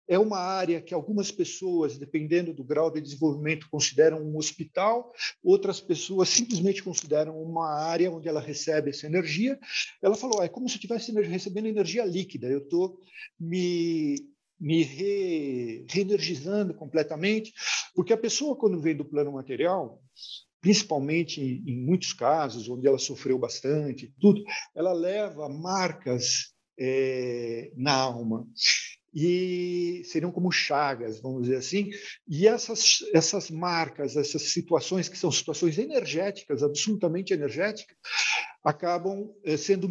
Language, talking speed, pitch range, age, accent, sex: Portuguese, 130 wpm, 155-200 Hz, 50-69, Brazilian, male